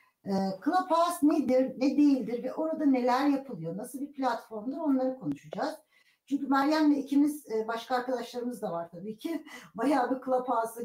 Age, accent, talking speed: 60-79, native, 140 wpm